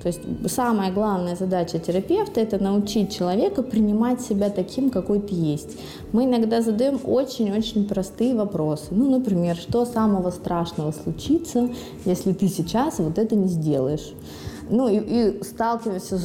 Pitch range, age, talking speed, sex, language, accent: 180-225 Hz, 20-39, 140 wpm, female, Russian, native